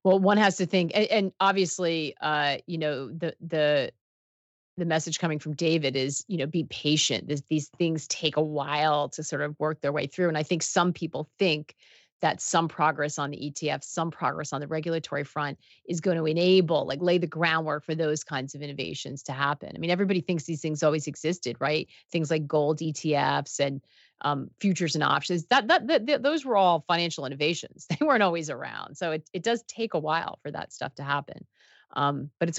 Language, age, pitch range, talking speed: English, 30-49, 150-190 Hz, 210 wpm